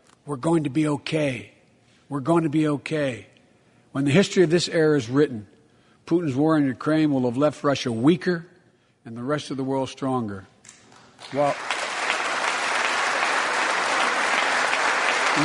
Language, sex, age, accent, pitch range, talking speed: English, male, 60-79, American, 130-160 Hz, 135 wpm